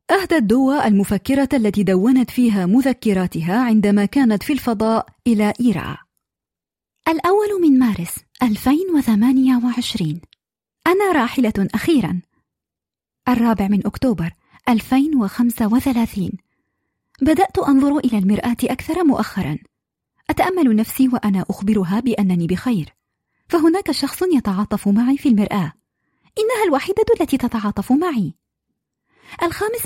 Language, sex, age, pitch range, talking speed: Arabic, female, 20-39, 220-325 Hz, 95 wpm